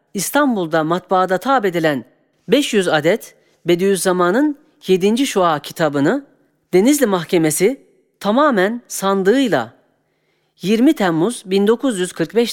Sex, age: female, 40-59